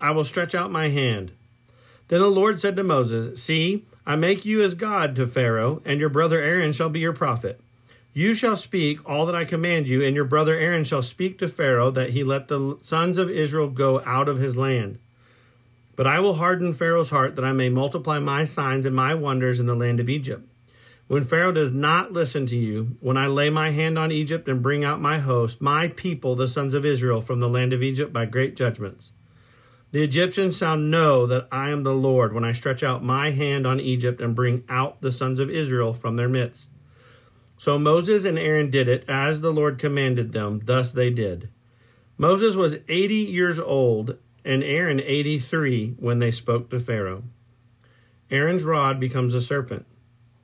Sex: male